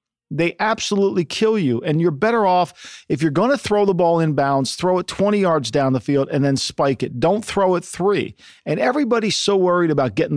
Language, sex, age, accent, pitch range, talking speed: English, male, 50-69, American, 145-200 Hz, 215 wpm